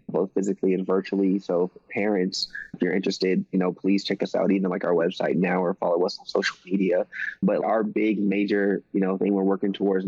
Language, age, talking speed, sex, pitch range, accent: English, 20-39, 220 wpm, male, 95-100 Hz, American